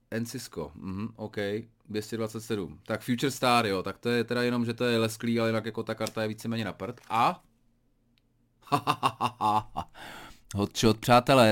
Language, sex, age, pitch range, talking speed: Czech, male, 30-49, 110-130 Hz, 155 wpm